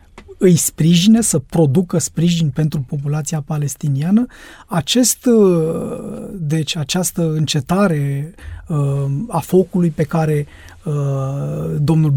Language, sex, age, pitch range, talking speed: Romanian, male, 30-49, 150-195 Hz, 85 wpm